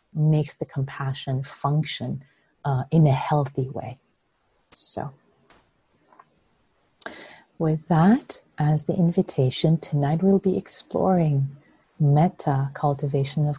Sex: female